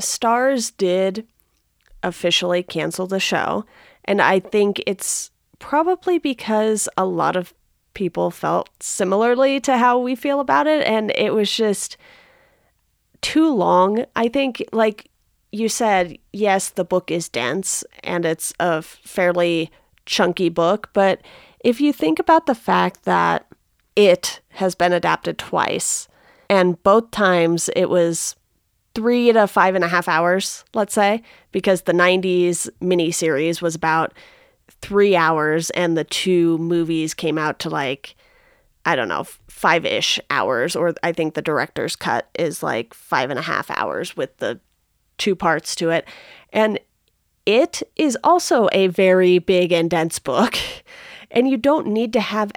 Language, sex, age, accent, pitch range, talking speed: English, female, 30-49, American, 170-230 Hz, 145 wpm